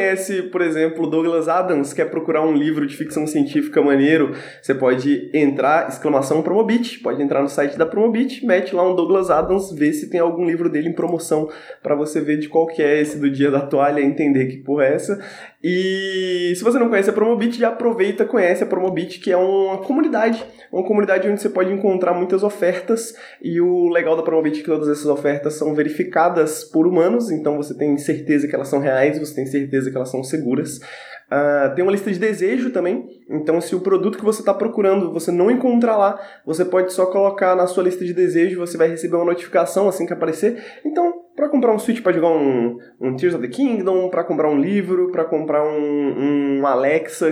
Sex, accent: male, Brazilian